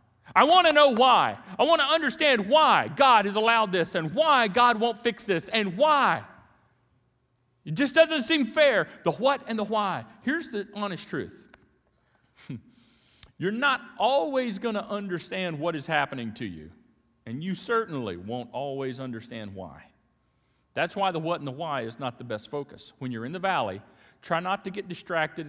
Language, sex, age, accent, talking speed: English, male, 40-59, American, 180 wpm